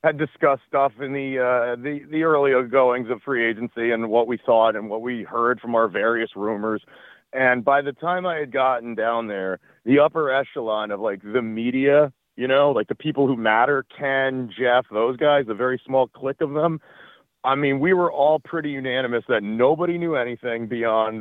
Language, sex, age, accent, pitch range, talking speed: English, male, 40-59, American, 115-140 Hz, 200 wpm